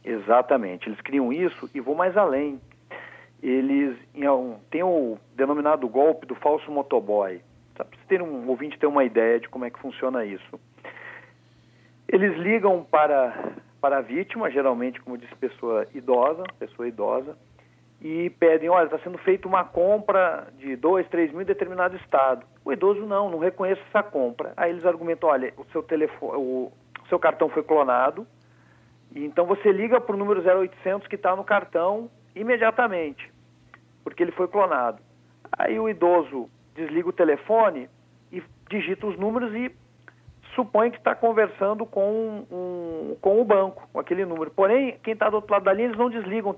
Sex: male